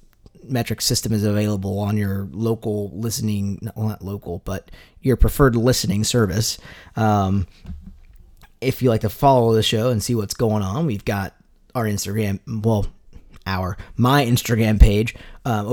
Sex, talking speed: male, 145 wpm